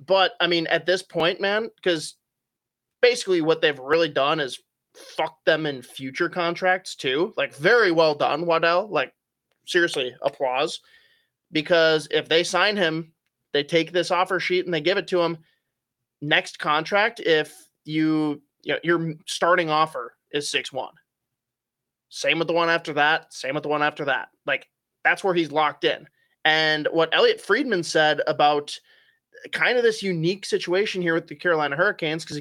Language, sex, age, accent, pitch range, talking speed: English, male, 20-39, American, 150-185 Hz, 170 wpm